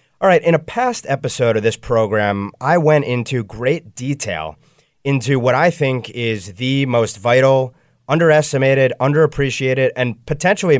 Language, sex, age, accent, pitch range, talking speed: English, male, 30-49, American, 110-145 Hz, 145 wpm